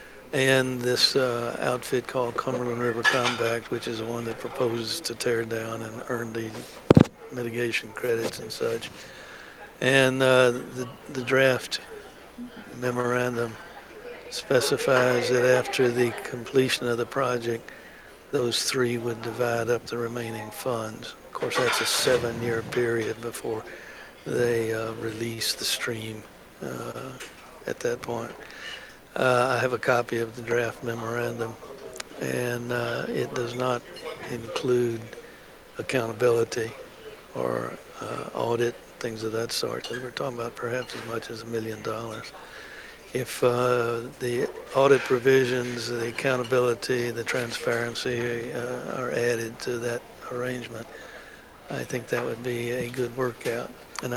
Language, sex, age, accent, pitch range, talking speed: English, male, 60-79, American, 115-130 Hz, 130 wpm